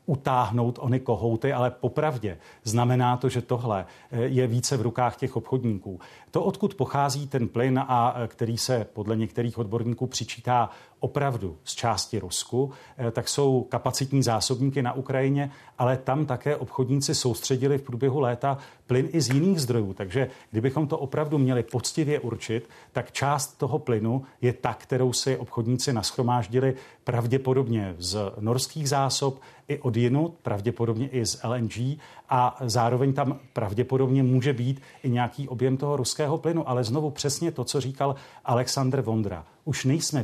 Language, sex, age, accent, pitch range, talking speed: Czech, male, 40-59, native, 120-140 Hz, 150 wpm